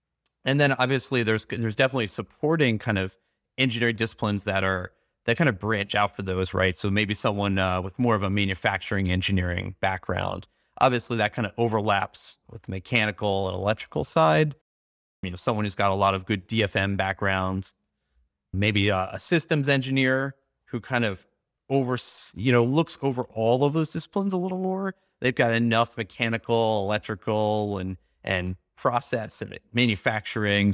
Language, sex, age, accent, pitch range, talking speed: English, male, 30-49, American, 95-130 Hz, 165 wpm